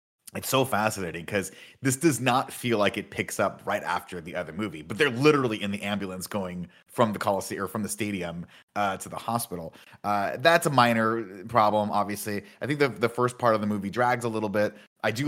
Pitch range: 100-130 Hz